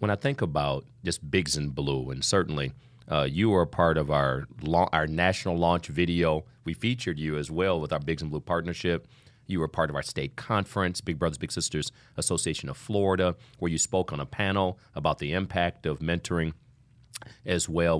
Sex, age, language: male, 40-59, English